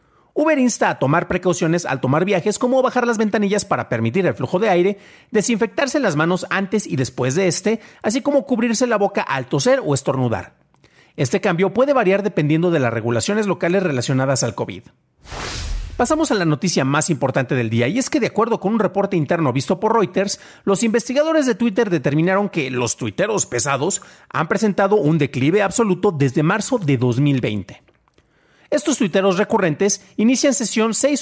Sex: male